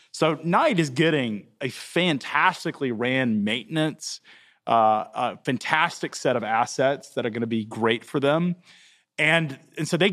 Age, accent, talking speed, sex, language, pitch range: 30-49, American, 155 wpm, male, English, 120-155 Hz